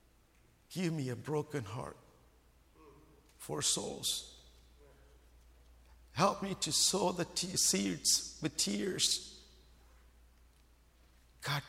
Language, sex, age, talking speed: English, male, 50-69, 80 wpm